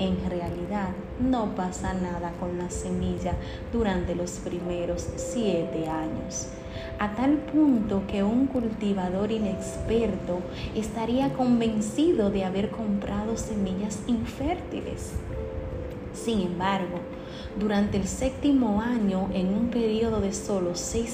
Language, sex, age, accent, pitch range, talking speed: Spanish, female, 30-49, American, 180-235 Hz, 110 wpm